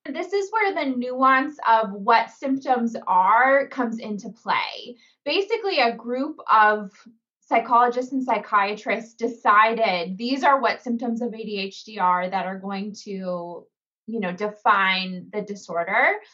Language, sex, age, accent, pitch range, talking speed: English, female, 20-39, American, 205-265 Hz, 130 wpm